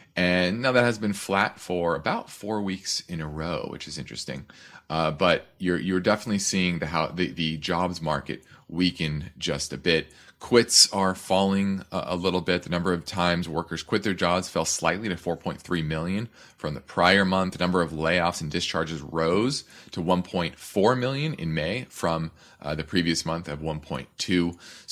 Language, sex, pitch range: English, male, 80-100 Hz